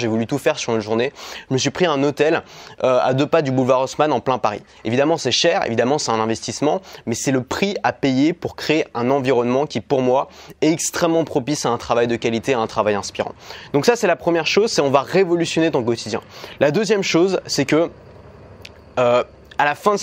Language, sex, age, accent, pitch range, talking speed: French, male, 20-39, French, 125-165 Hz, 230 wpm